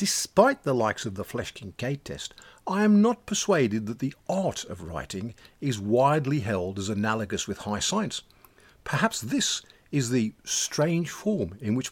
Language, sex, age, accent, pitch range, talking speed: English, male, 50-69, British, 105-165 Hz, 165 wpm